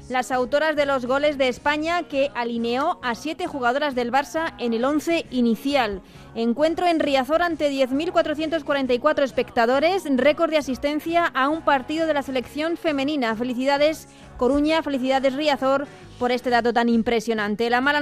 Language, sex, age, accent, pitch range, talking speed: Spanish, female, 20-39, Spanish, 245-290 Hz, 150 wpm